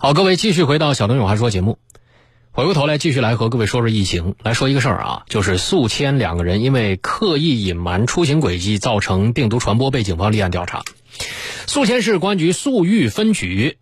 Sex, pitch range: male, 105-145 Hz